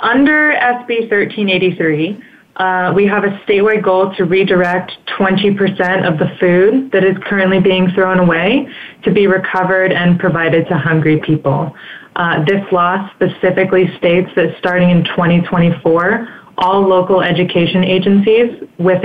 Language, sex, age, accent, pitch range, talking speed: English, female, 20-39, American, 175-200 Hz, 135 wpm